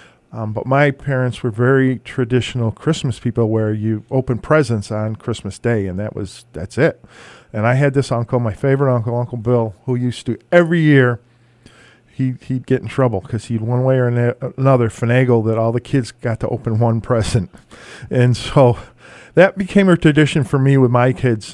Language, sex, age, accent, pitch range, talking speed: English, male, 50-69, American, 115-135 Hz, 190 wpm